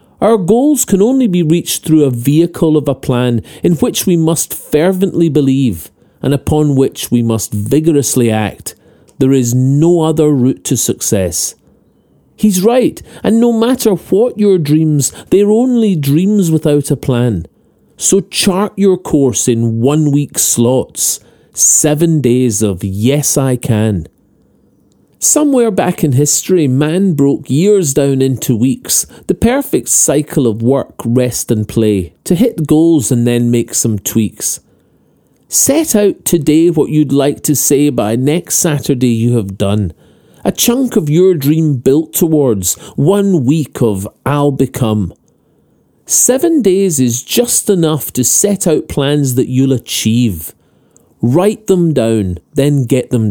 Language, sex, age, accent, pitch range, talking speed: English, male, 40-59, British, 120-175 Hz, 145 wpm